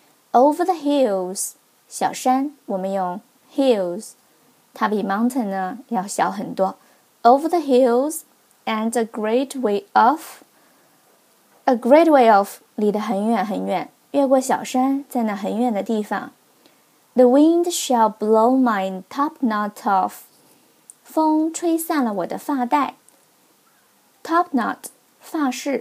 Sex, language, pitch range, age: female, Chinese, 215-280 Hz, 20-39